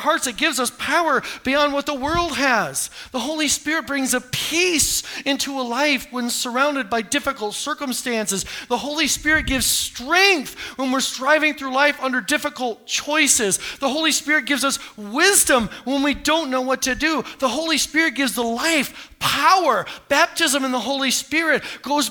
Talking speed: 170 wpm